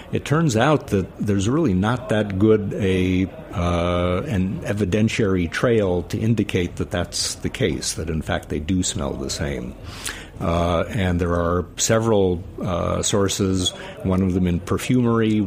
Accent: American